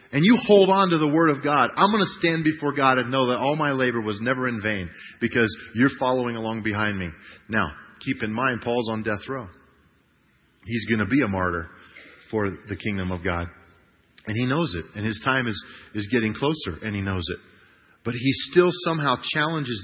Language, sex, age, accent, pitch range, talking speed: English, male, 40-59, American, 115-145 Hz, 210 wpm